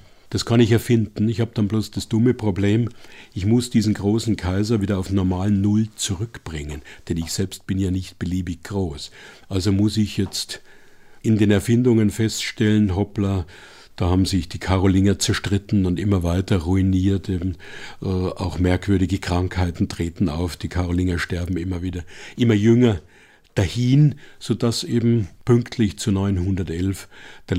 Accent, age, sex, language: German, 50-69, male, German